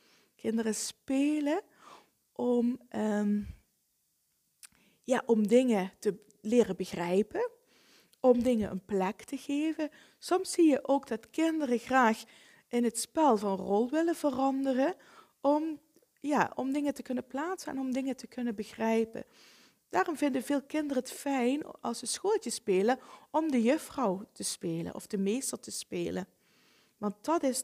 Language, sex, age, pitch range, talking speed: Dutch, female, 20-39, 210-275 Hz, 135 wpm